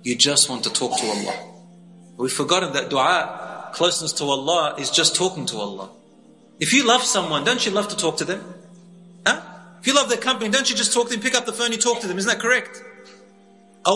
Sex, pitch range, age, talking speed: male, 175-235 Hz, 30-49, 230 wpm